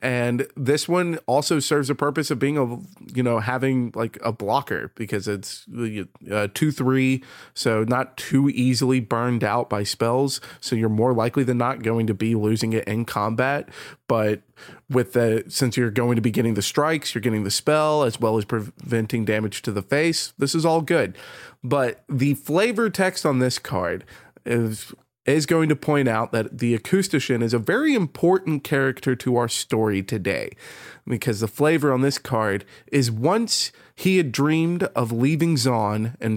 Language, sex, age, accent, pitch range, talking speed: English, male, 30-49, American, 115-150 Hz, 180 wpm